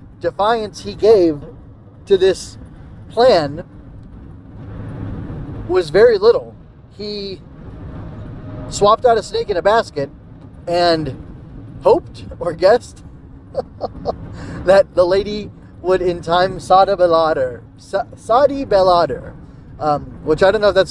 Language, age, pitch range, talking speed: English, 20-39, 130-180 Hz, 105 wpm